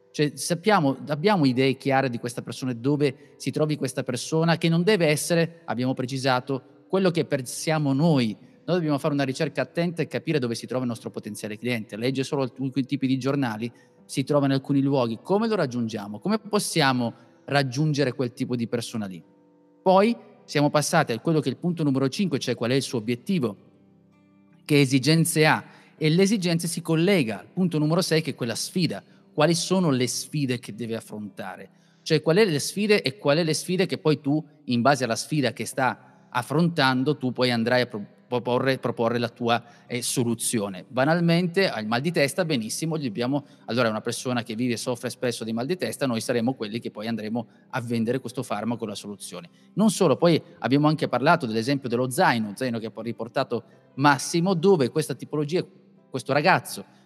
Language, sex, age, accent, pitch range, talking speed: Italian, male, 30-49, native, 120-160 Hz, 195 wpm